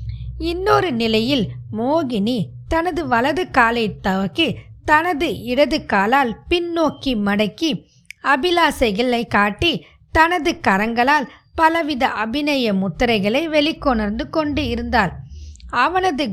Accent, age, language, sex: native, 20-39, Tamil, female